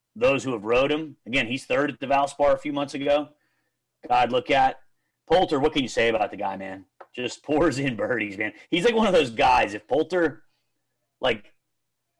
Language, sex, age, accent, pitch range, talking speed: English, male, 30-49, American, 120-160 Hz, 200 wpm